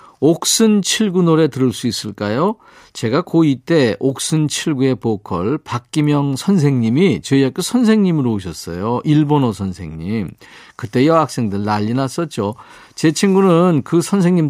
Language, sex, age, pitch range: Korean, male, 40-59, 115-160 Hz